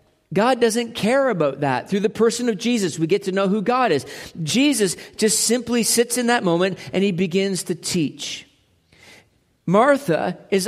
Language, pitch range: English, 165-220 Hz